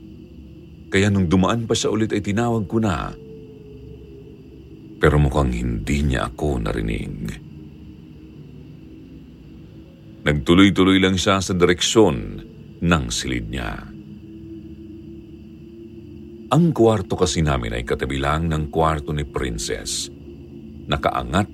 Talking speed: 100 wpm